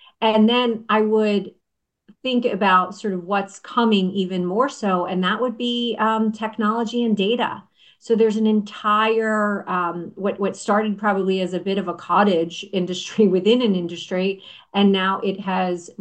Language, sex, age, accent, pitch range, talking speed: English, female, 40-59, American, 175-215 Hz, 165 wpm